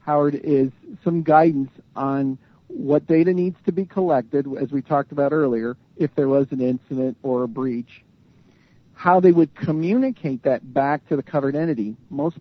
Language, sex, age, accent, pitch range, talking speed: English, male, 50-69, American, 135-160 Hz, 165 wpm